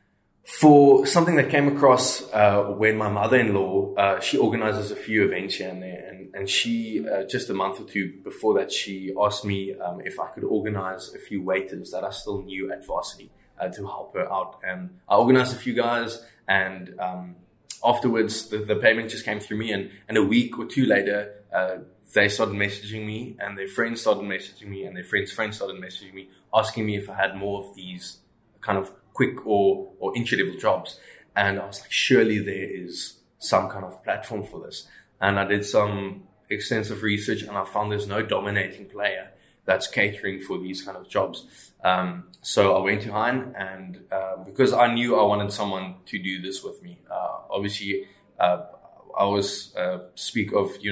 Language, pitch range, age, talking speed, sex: English, 95-110 Hz, 20-39, 200 wpm, male